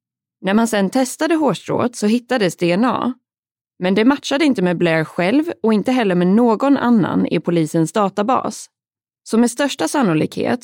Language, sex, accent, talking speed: Swedish, female, native, 160 wpm